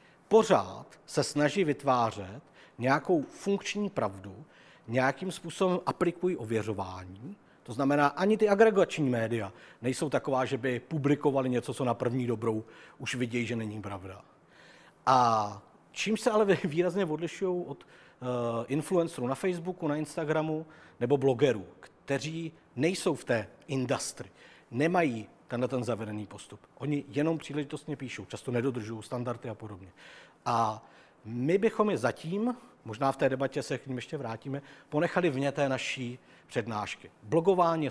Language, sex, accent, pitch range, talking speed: Czech, male, native, 120-165 Hz, 135 wpm